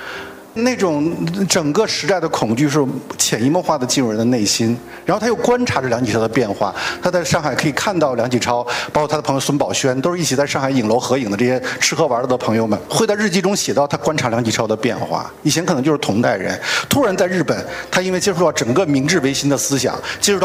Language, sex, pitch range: Chinese, male, 120-175 Hz